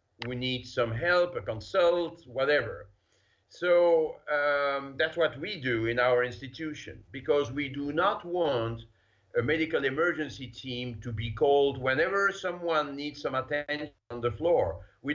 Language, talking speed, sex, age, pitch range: English, 145 wpm, male, 50-69, 110-160 Hz